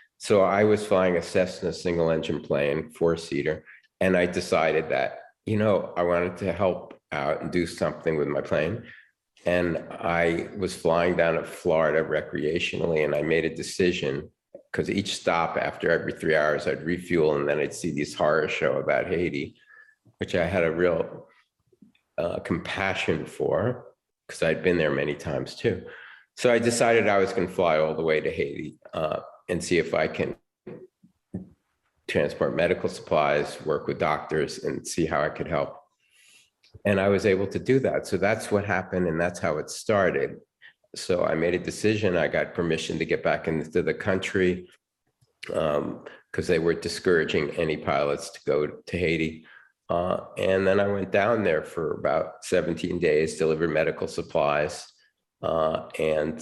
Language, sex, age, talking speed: English, male, 50-69, 170 wpm